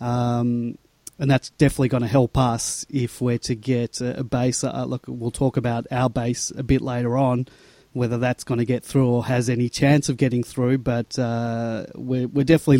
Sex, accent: male, Australian